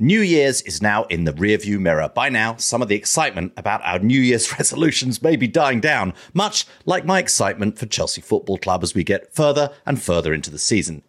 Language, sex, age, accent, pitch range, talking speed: English, male, 30-49, British, 105-160 Hz, 215 wpm